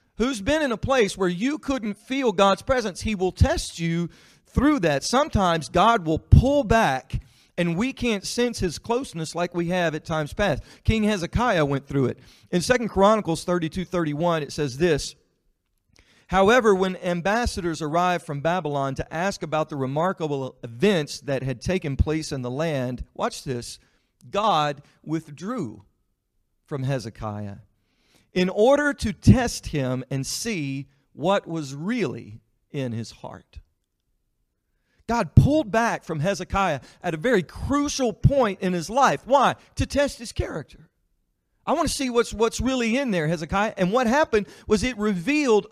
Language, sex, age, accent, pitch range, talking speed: English, male, 40-59, American, 145-225 Hz, 155 wpm